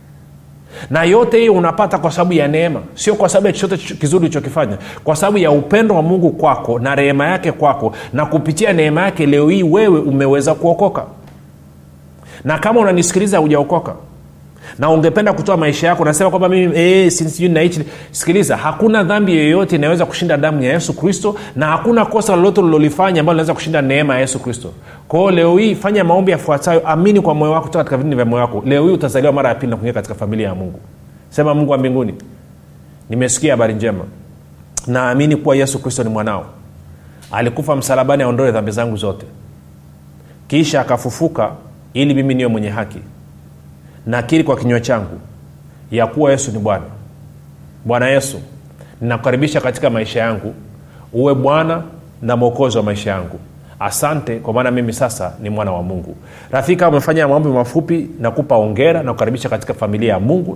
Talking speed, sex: 170 wpm, male